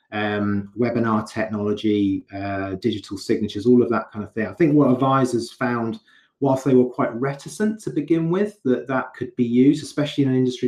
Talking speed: 190 wpm